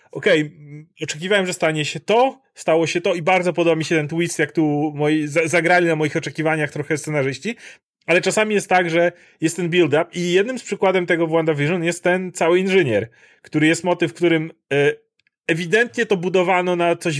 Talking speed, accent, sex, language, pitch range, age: 185 wpm, native, male, Polish, 155-185 Hz, 30-49